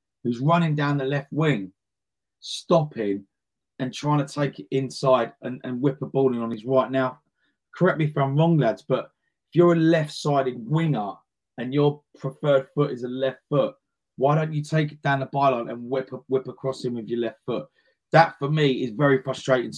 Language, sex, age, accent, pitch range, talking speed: English, male, 30-49, British, 120-145 Hz, 205 wpm